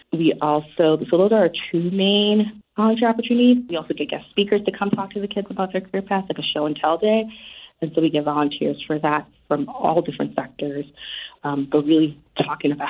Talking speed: 220 wpm